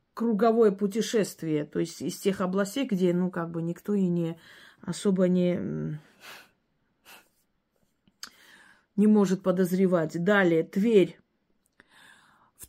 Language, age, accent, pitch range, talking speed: Russian, 30-49, native, 175-205 Hz, 105 wpm